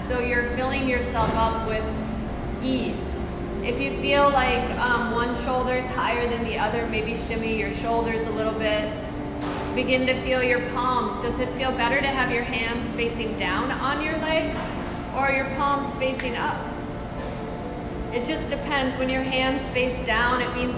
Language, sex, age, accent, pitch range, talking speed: English, female, 30-49, American, 235-260 Hz, 170 wpm